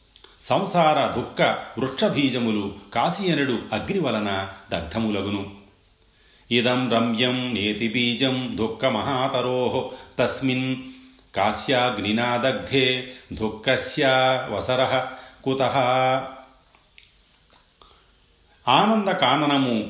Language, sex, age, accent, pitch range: Telugu, male, 40-59, native, 110-130 Hz